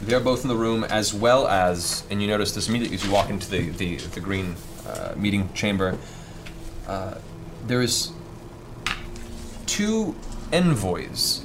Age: 30-49